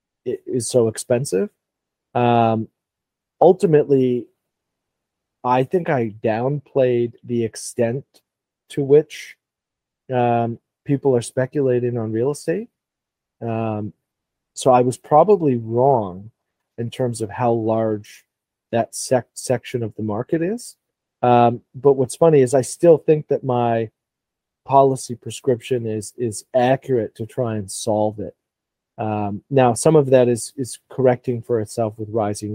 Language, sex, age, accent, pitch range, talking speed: English, male, 30-49, American, 115-130 Hz, 130 wpm